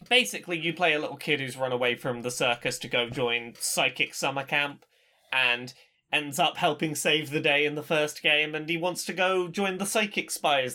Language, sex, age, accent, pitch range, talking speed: English, male, 20-39, British, 140-185 Hz, 210 wpm